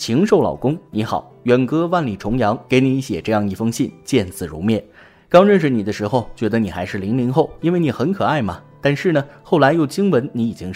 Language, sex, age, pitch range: Chinese, male, 30-49, 105-145 Hz